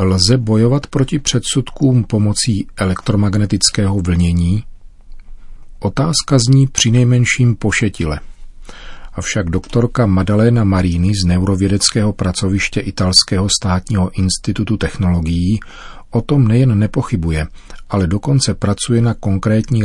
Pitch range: 90-110 Hz